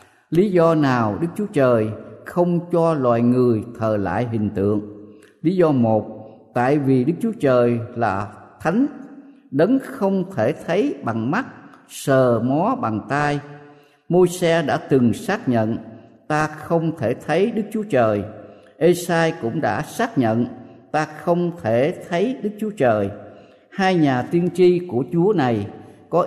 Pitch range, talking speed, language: 115-175 Hz, 155 wpm, Vietnamese